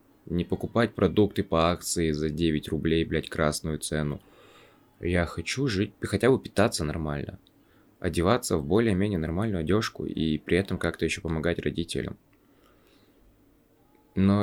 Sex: male